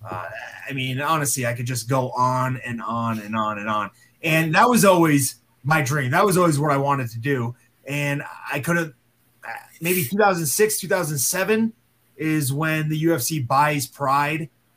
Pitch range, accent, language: 125-155 Hz, American, English